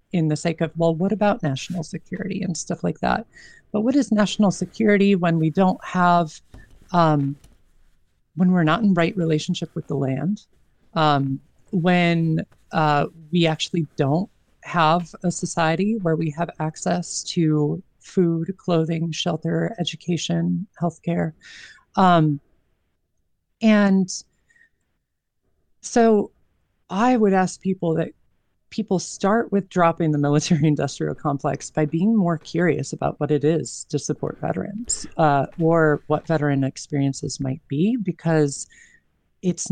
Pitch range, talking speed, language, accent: 150-180 Hz, 130 wpm, English, American